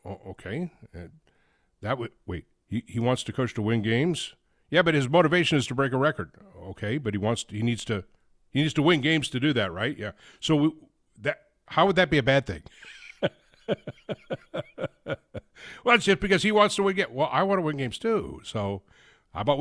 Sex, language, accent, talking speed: male, English, American, 215 wpm